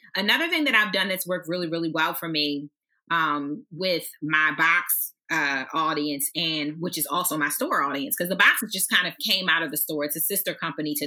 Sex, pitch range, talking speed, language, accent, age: female, 165-220 Hz, 220 wpm, English, American, 30-49